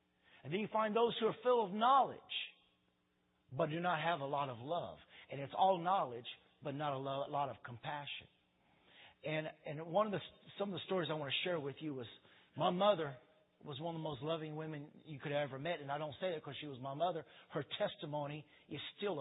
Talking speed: 225 wpm